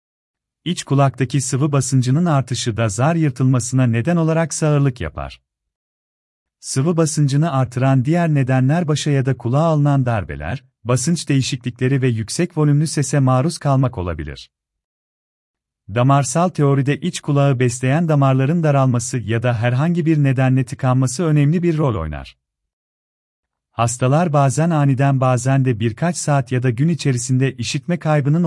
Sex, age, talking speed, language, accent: male, 40-59, 130 wpm, Turkish, native